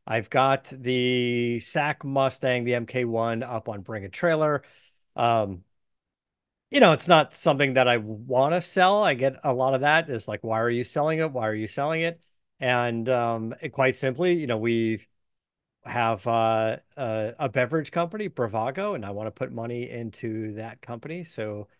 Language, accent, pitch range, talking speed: English, American, 110-140 Hz, 180 wpm